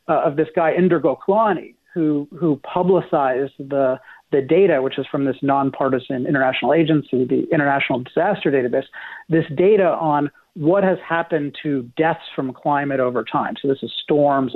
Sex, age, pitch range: male, 40-59, 145-180 Hz